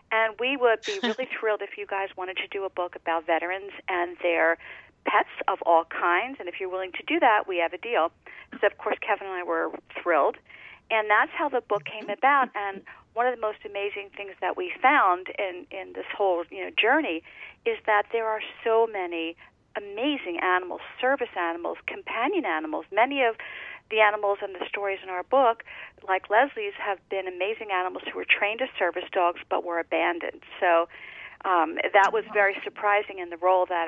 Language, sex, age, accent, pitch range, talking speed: English, female, 40-59, American, 180-225 Hz, 200 wpm